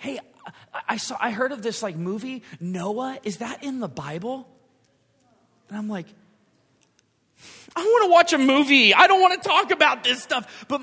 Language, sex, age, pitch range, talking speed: English, male, 30-49, 155-235 Hz, 185 wpm